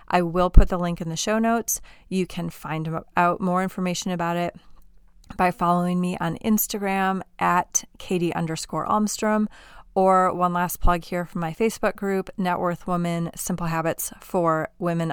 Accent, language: American, English